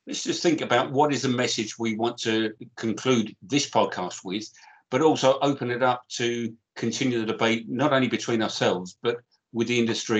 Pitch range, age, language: 110-130 Hz, 50-69, English